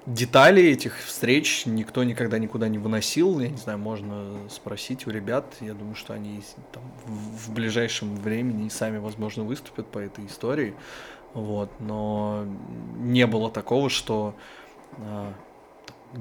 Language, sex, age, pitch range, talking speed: Russian, male, 20-39, 105-125 Hz, 135 wpm